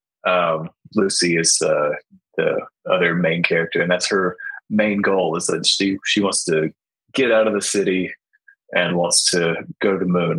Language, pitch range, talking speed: English, 95-125 Hz, 180 wpm